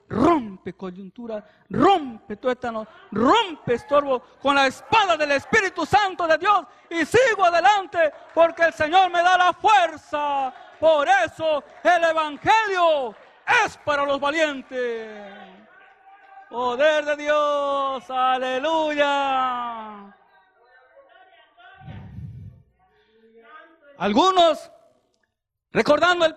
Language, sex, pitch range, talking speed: English, male, 270-350 Hz, 90 wpm